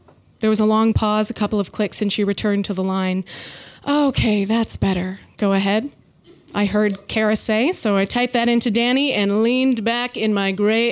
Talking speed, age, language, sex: 200 wpm, 20-39, English, female